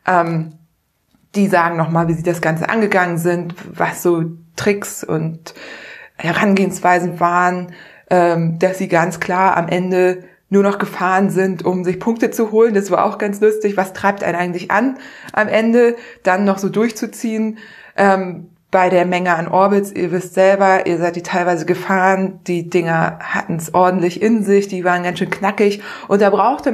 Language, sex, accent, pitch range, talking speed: German, female, German, 180-210 Hz, 170 wpm